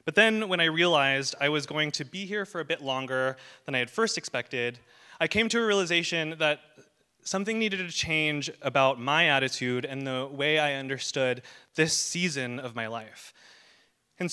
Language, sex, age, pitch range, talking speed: English, male, 20-39, 130-175 Hz, 185 wpm